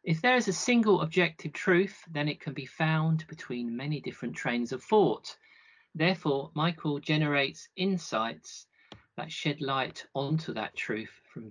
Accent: British